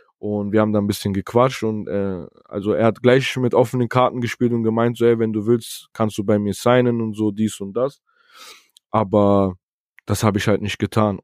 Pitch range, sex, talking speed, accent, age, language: 100-110 Hz, male, 220 wpm, German, 20-39, German